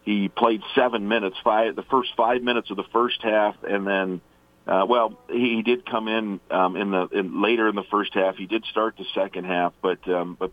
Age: 50-69